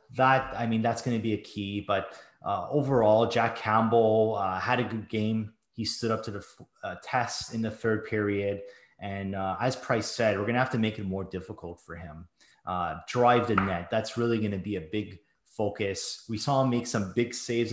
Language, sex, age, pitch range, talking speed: English, male, 30-49, 95-115 Hz, 215 wpm